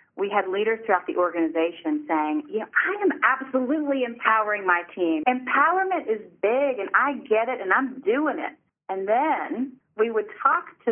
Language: English